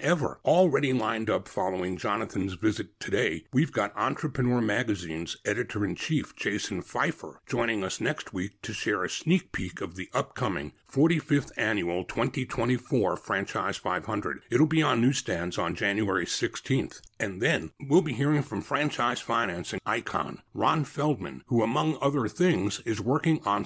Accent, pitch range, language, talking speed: American, 110-150 Hz, English, 145 wpm